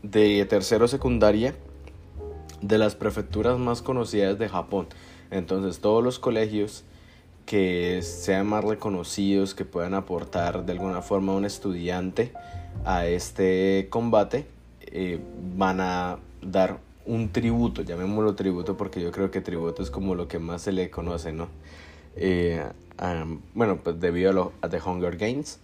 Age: 30-49